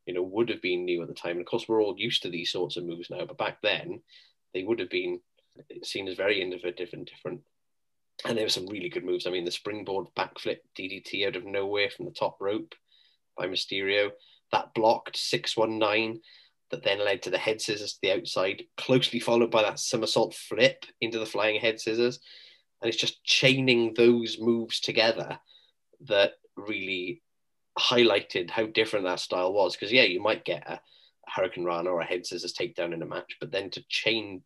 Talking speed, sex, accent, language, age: 200 wpm, male, British, English, 20-39